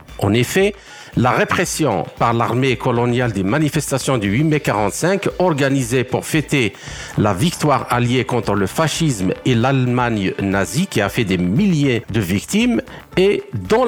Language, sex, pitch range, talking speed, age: French, male, 115-160 Hz, 145 wpm, 50-69